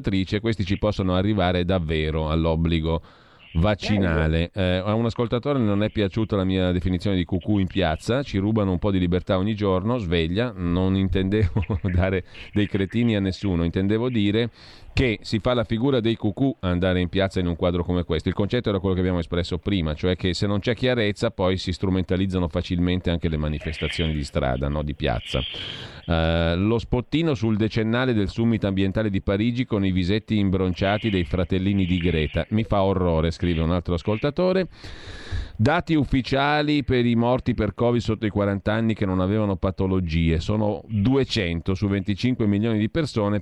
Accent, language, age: native, Italian, 40-59